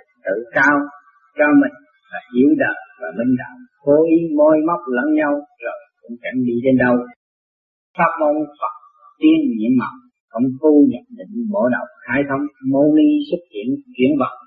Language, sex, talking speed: Vietnamese, male, 175 wpm